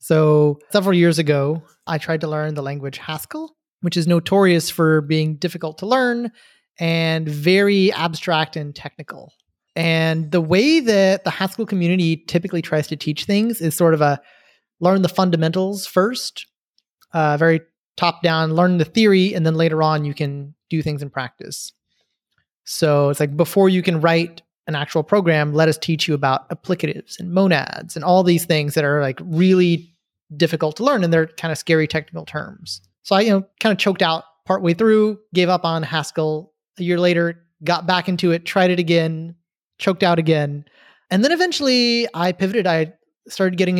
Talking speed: 180 wpm